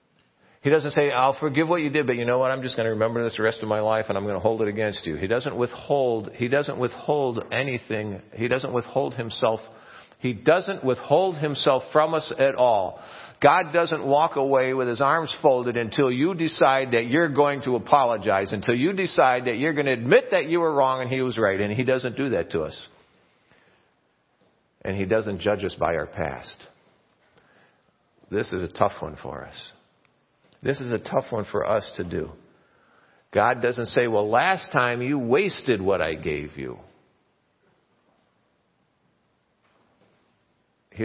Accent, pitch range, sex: American, 110-140 Hz, male